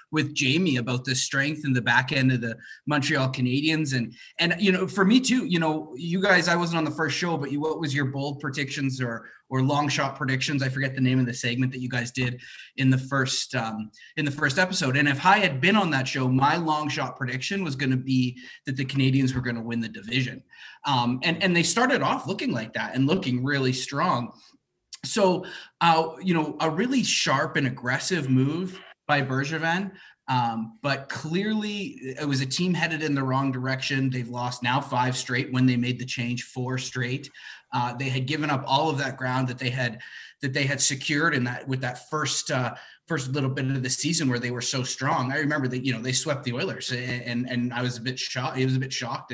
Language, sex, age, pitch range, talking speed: English, male, 20-39, 130-155 Hz, 230 wpm